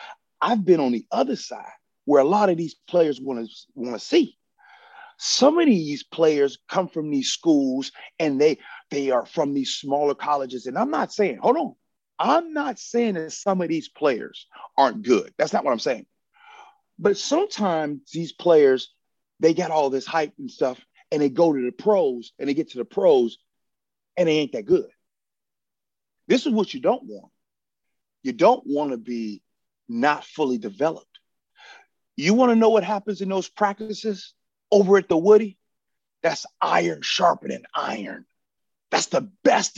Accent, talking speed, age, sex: American, 175 wpm, 40-59, male